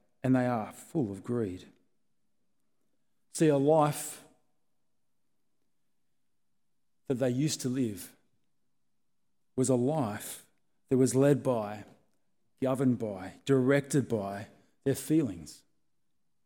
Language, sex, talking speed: English, male, 100 wpm